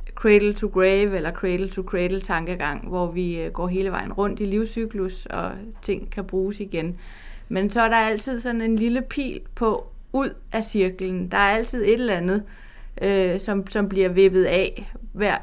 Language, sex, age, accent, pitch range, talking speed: Danish, female, 20-39, native, 185-215 Hz, 180 wpm